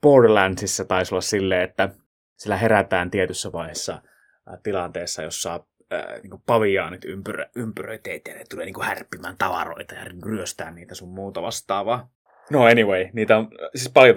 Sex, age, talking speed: male, 20-39, 135 wpm